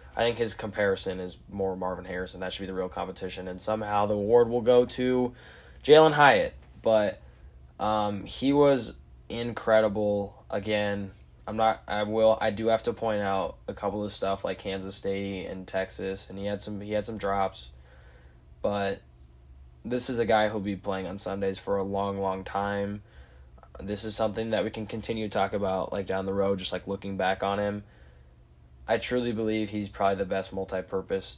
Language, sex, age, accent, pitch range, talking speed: English, male, 10-29, American, 95-105 Hz, 190 wpm